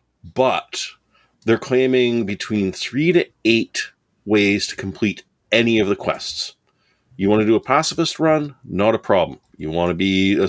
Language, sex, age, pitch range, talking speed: English, male, 30-49, 90-125 Hz, 155 wpm